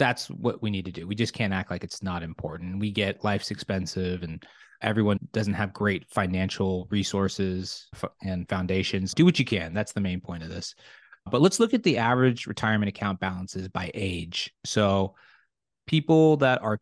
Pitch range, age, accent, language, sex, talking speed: 100-125 Hz, 30-49, American, English, male, 185 wpm